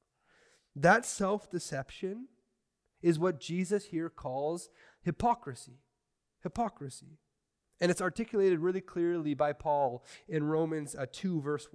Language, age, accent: English, 30-49, American